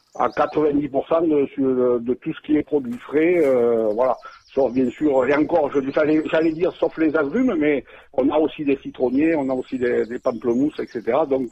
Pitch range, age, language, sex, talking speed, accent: 130-155 Hz, 60-79, French, male, 210 wpm, French